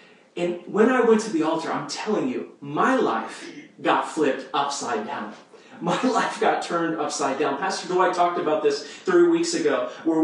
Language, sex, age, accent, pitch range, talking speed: English, male, 30-49, American, 175-270 Hz, 180 wpm